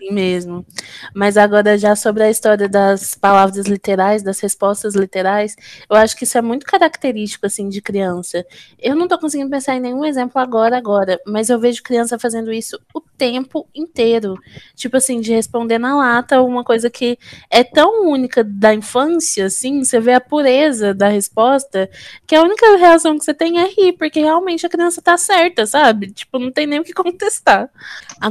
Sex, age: female, 20-39